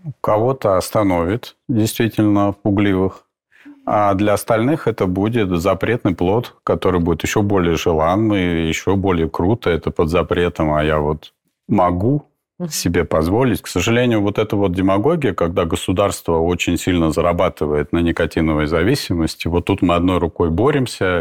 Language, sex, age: Russian, male, 40-59